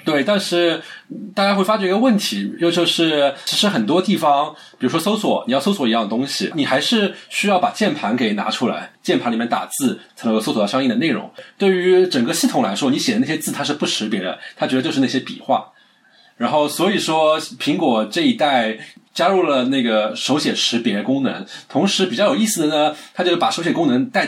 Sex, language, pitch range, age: male, Chinese, 150-240 Hz, 20-39